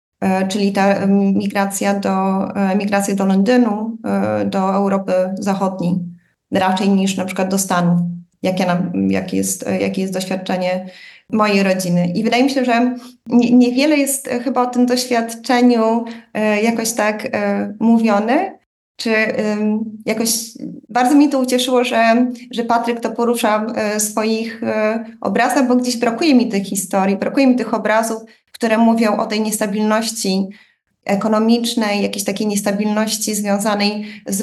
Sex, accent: female, native